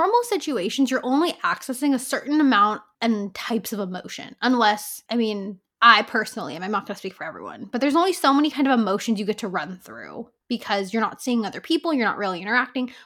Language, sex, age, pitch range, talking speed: English, female, 10-29, 210-275 Hz, 215 wpm